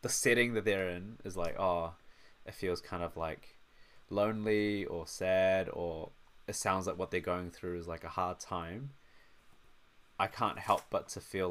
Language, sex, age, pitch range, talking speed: English, male, 20-39, 85-100 Hz, 180 wpm